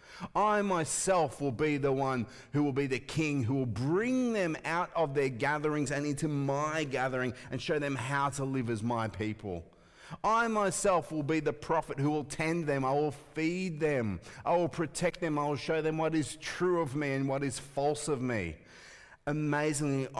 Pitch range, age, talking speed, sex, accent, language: 100-145 Hz, 30-49, 195 wpm, male, Australian, English